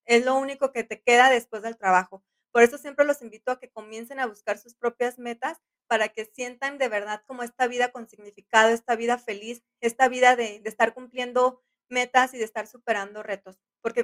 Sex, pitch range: female, 225-260 Hz